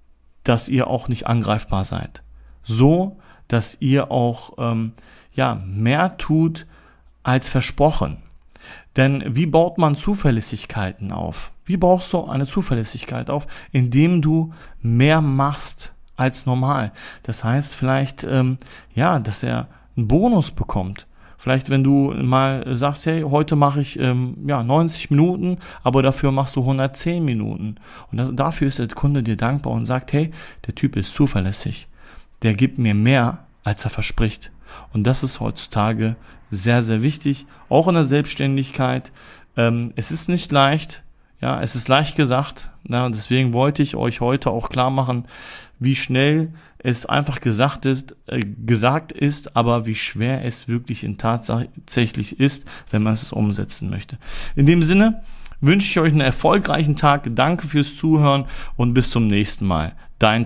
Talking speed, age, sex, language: 155 wpm, 40-59, male, German